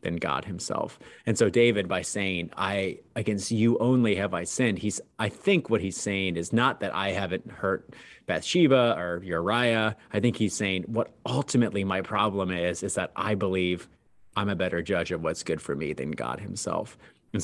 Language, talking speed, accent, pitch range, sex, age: English, 190 wpm, American, 90-110 Hz, male, 30-49